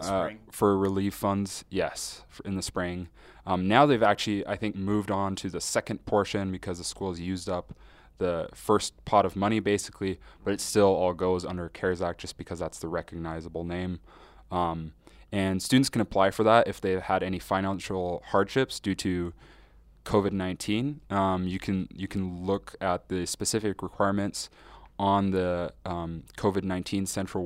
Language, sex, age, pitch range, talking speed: English, male, 20-39, 90-100 Hz, 170 wpm